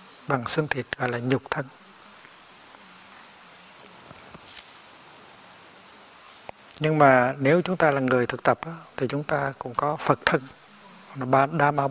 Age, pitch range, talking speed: 60-79, 130-155 Hz, 120 wpm